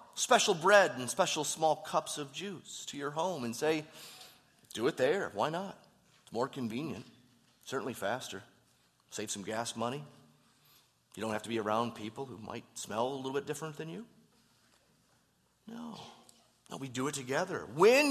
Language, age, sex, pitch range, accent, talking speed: English, 30-49, male, 120-160 Hz, American, 165 wpm